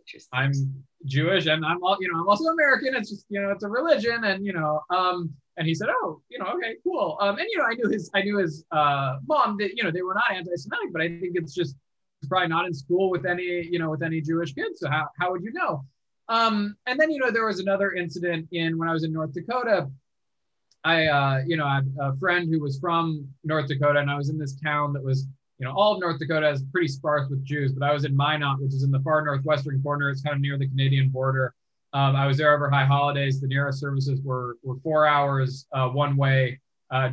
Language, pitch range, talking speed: English, 135-175 Hz, 250 wpm